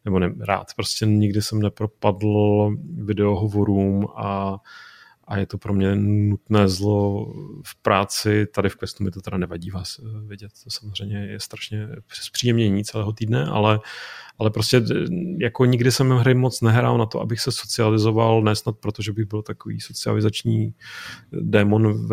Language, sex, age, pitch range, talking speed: Czech, male, 30-49, 105-115 Hz, 150 wpm